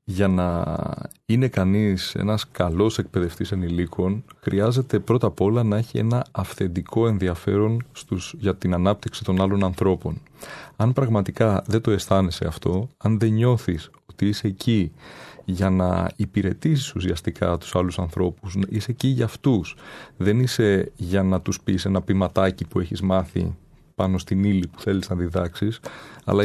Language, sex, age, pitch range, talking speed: Greek, male, 30-49, 95-115 Hz, 150 wpm